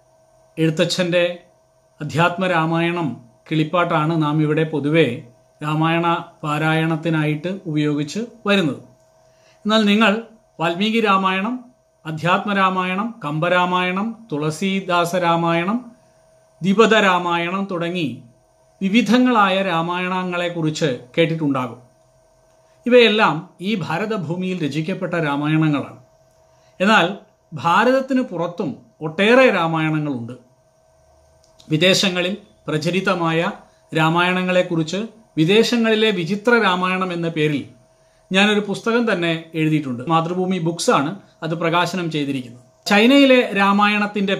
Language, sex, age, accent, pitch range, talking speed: Malayalam, male, 40-59, native, 155-205 Hz, 70 wpm